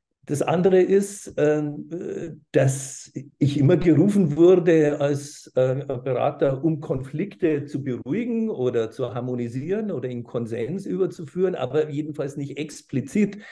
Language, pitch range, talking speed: German, 130-180 Hz, 110 wpm